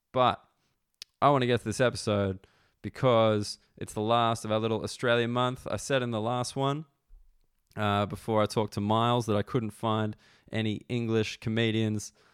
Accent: Australian